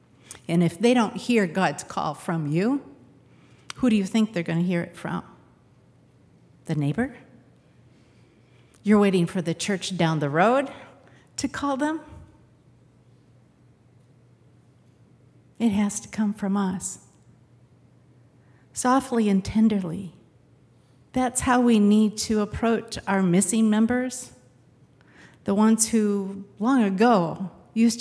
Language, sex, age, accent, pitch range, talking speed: English, female, 50-69, American, 170-225 Hz, 120 wpm